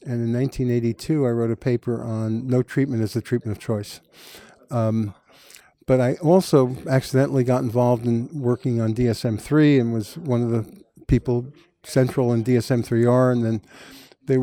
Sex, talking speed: male, 165 wpm